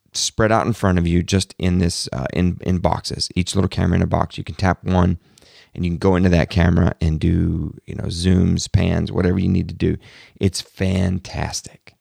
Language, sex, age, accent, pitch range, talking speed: English, male, 30-49, American, 85-105 Hz, 215 wpm